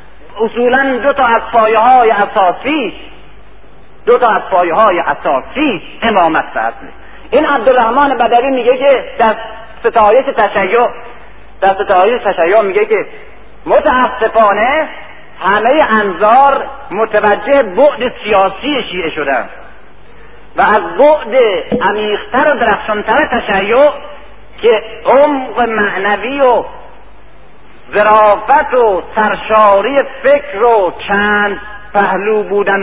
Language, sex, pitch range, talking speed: Persian, male, 205-275 Hz, 100 wpm